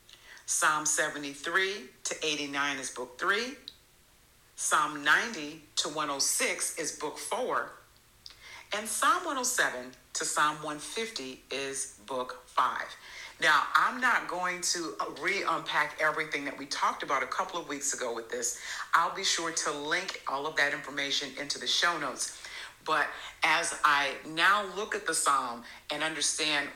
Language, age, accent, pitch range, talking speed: English, 50-69, American, 135-175 Hz, 145 wpm